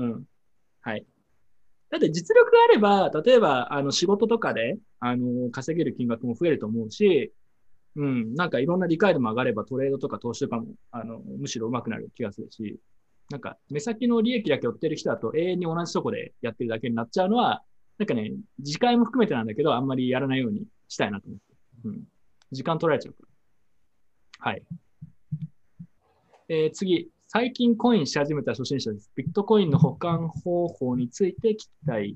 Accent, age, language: native, 20-39, Japanese